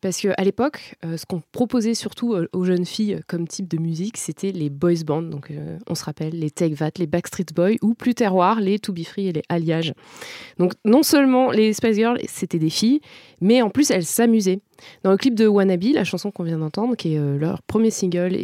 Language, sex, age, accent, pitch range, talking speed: French, female, 20-39, French, 165-220 Hz, 230 wpm